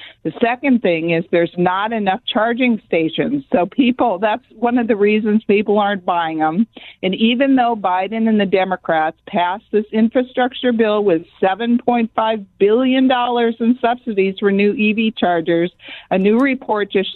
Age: 50-69